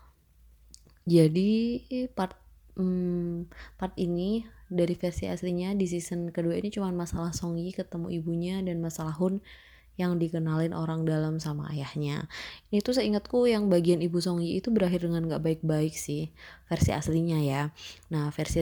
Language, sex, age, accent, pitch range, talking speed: Indonesian, female, 20-39, native, 160-185 Hz, 145 wpm